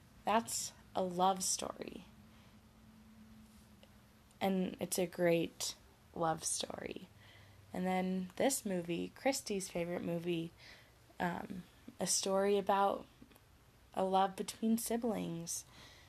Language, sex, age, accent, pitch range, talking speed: English, female, 20-39, American, 155-200 Hz, 95 wpm